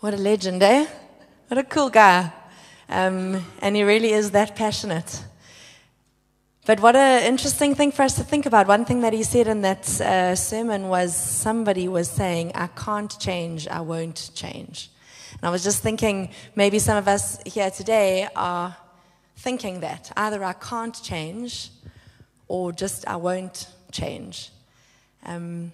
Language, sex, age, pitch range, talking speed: English, female, 20-39, 175-215 Hz, 160 wpm